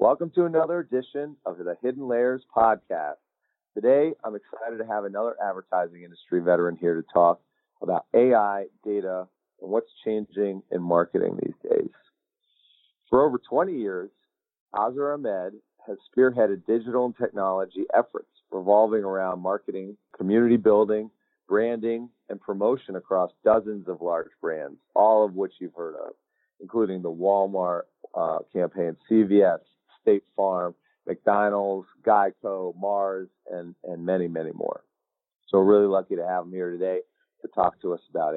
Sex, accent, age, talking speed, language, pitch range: male, American, 40-59, 145 wpm, English, 90-120 Hz